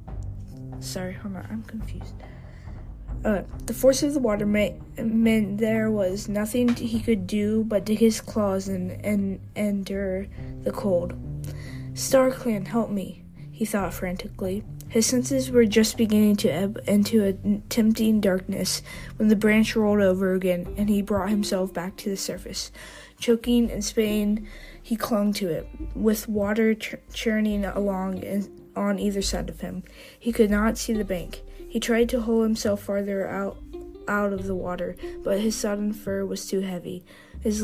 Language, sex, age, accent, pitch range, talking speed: English, female, 20-39, American, 185-225 Hz, 165 wpm